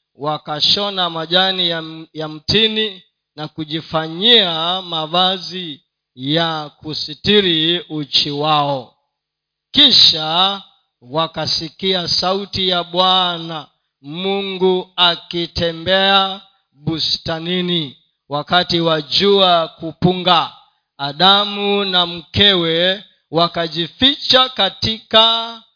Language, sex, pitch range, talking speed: Swahili, male, 155-195 Hz, 65 wpm